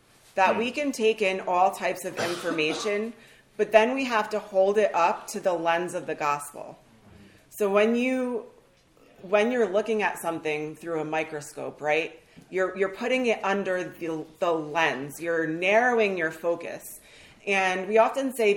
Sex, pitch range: female, 170-215 Hz